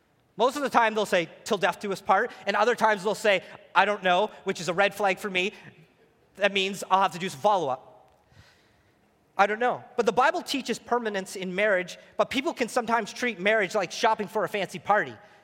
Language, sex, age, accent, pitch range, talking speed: English, male, 30-49, American, 195-245 Hz, 220 wpm